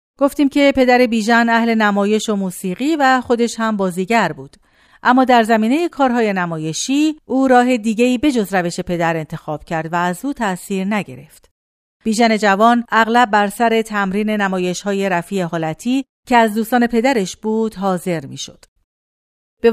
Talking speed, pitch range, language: 145 wpm, 185-245 Hz, Persian